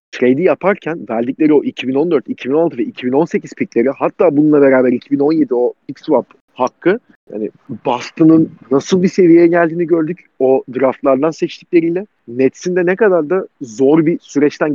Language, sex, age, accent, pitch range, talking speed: Turkish, male, 40-59, native, 130-165 Hz, 140 wpm